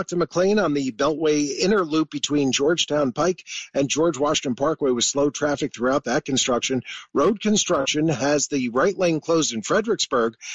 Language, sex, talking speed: English, male, 165 wpm